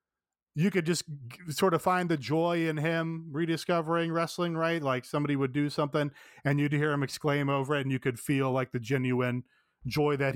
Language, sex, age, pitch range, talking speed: English, male, 30-49, 125-160 Hz, 195 wpm